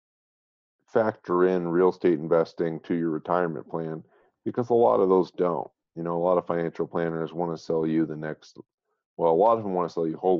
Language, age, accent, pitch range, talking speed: English, 40-59, American, 80-90 Hz, 220 wpm